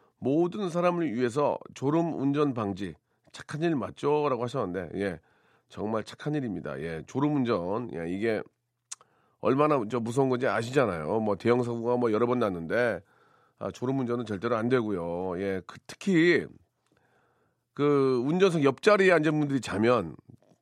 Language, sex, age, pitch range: Korean, male, 40-59, 110-150 Hz